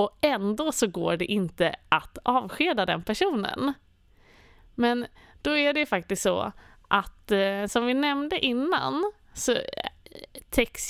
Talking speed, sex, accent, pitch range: 125 wpm, female, native, 185-265 Hz